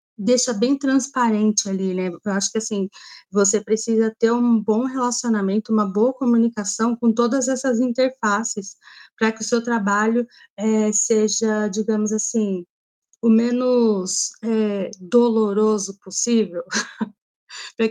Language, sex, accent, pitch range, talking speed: Portuguese, female, Brazilian, 200-230 Hz, 115 wpm